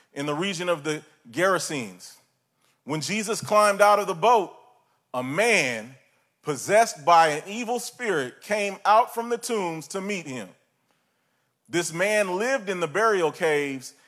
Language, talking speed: English, 150 wpm